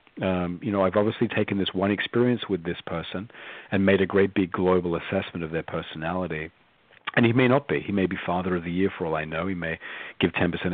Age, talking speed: 40-59, 235 wpm